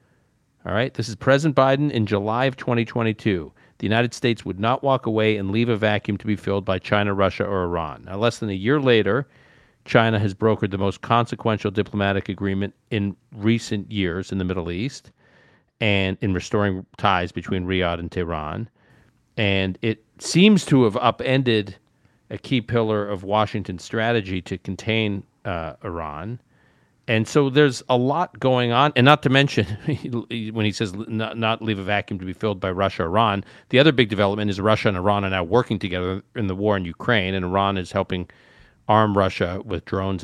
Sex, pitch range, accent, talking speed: male, 95-120 Hz, American, 185 wpm